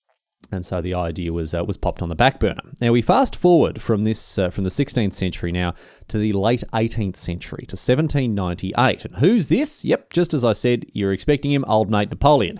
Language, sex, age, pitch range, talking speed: English, male, 30-49, 95-130 Hz, 215 wpm